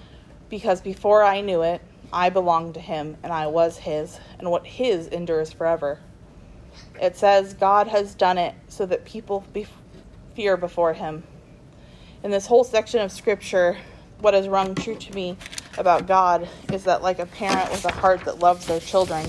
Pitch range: 170-195 Hz